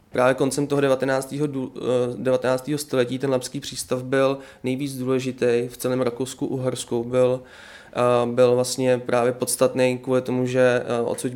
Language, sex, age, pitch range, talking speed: Czech, male, 20-39, 125-135 Hz, 125 wpm